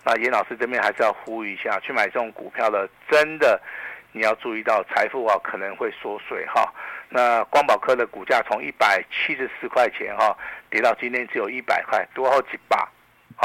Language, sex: Chinese, male